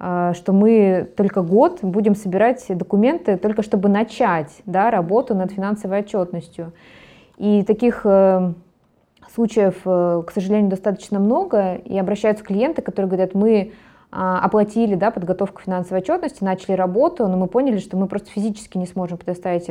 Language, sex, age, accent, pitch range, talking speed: Russian, female, 20-39, native, 180-210 Hz, 130 wpm